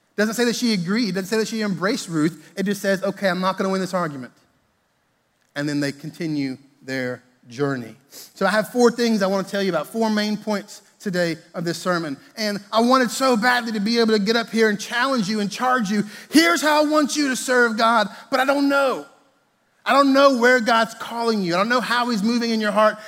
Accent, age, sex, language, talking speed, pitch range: American, 30-49, male, English, 240 wpm, 180-225 Hz